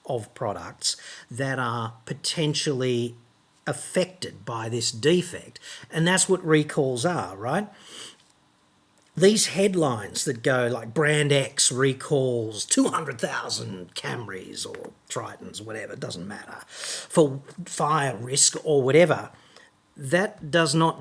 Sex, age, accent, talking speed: male, 50-69, Australian, 110 wpm